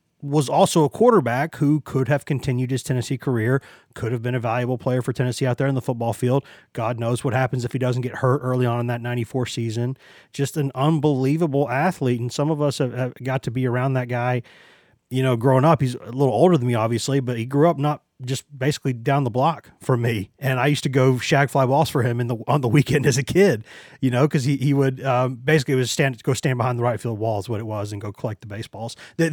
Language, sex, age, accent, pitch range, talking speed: English, male, 30-49, American, 120-140 Hz, 255 wpm